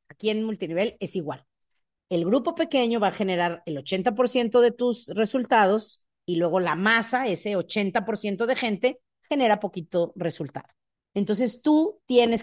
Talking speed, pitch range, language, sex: 145 wpm, 175-225 Hz, Spanish, female